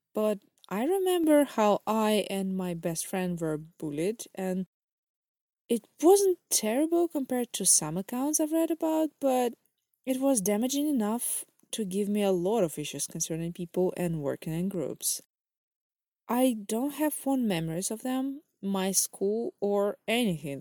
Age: 20-39